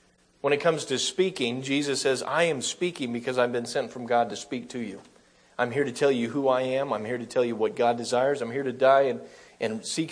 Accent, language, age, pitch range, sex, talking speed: American, English, 40-59, 115-150 Hz, male, 255 wpm